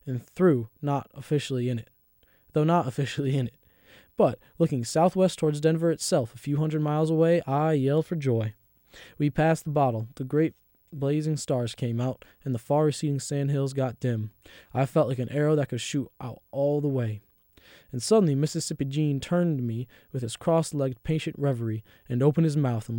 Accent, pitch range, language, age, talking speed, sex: American, 120-150 Hz, English, 20-39, 190 wpm, male